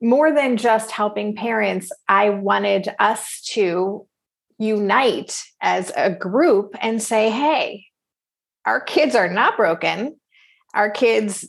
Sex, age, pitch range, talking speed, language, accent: female, 30-49, 195-230 Hz, 120 wpm, English, American